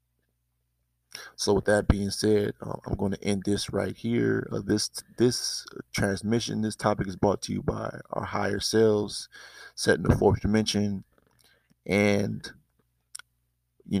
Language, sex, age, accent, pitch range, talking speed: English, male, 20-39, American, 95-110 Hz, 145 wpm